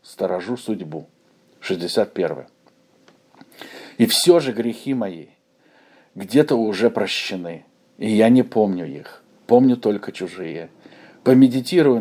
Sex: male